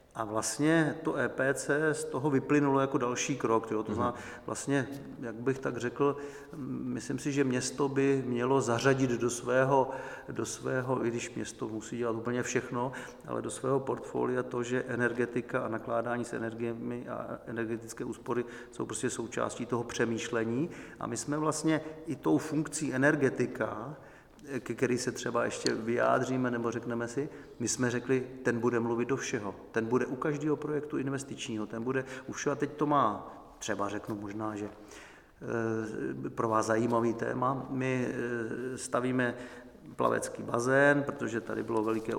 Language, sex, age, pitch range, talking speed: Czech, male, 40-59, 115-130 Hz, 155 wpm